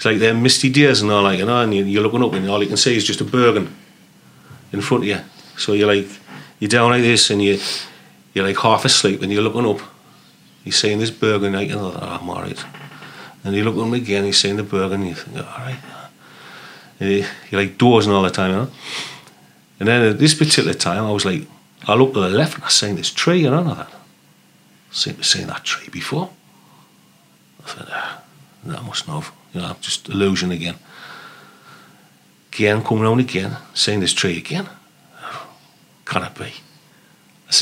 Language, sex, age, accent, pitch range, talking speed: English, male, 40-59, British, 100-135 Hz, 215 wpm